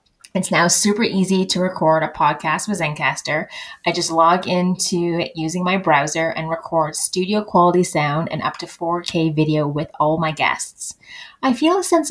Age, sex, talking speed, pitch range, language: 20-39, female, 175 wpm, 165-205 Hz, English